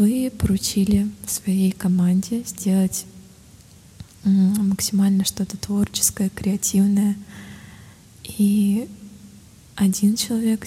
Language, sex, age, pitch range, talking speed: Russian, female, 20-39, 185-205 Hz, 65 wpm